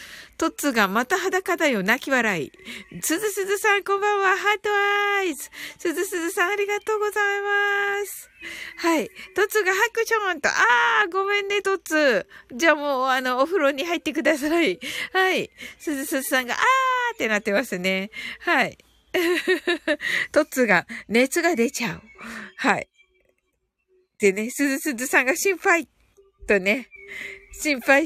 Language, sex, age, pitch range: Japanese, female, 50-69, 265-405 Hz